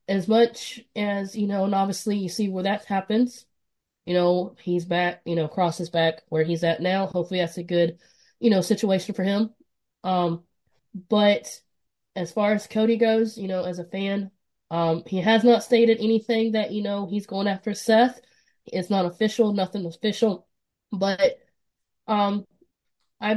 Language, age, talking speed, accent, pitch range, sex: English, 20-39, 170 wpm, American, 185-235 Hz, female